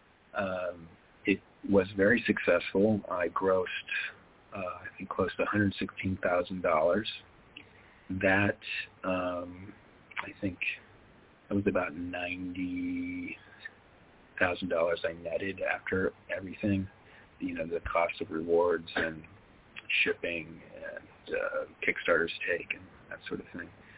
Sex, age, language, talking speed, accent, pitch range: male, 40-59, English, 105 wpm, American, 95-125 Hz